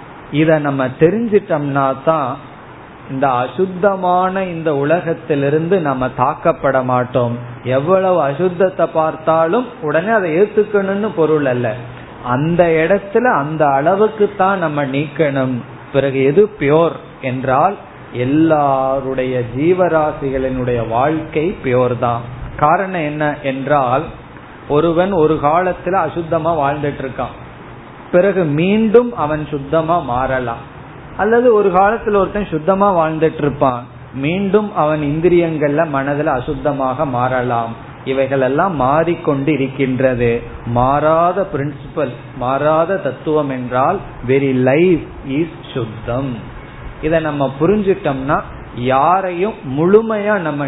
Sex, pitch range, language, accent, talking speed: male, 130-170 Hz, Tamil, native, 85 wpm